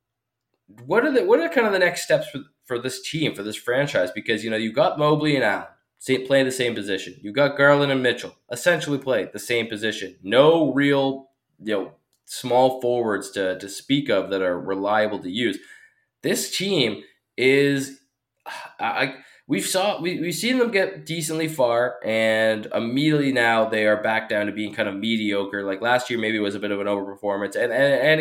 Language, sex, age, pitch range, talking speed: English, male, 20-39, 105-135 Hz, 200 wpm